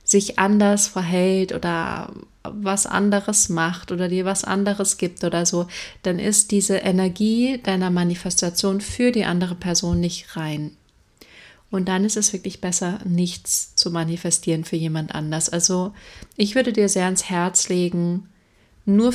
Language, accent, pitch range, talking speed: German, German, 165-195 Hz, 145 wpm